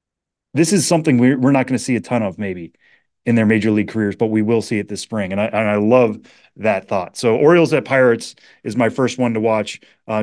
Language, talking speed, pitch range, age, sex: English, 240 wpm, 110-135 Hz, 30-49, male